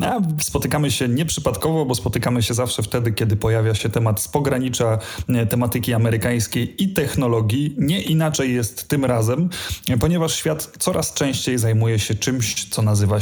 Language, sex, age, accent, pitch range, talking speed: Polish, male, 30-49, native, 120-150 Hz, 155 wpm